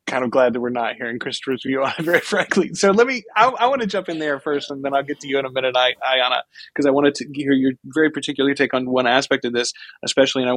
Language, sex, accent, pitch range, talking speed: English, male, American, 120-140 Hz, 285 wpm